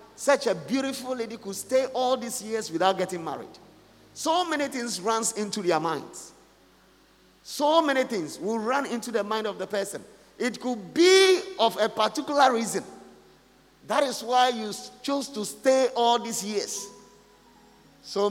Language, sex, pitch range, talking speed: English, male, 190-255 Hz, 155 wpm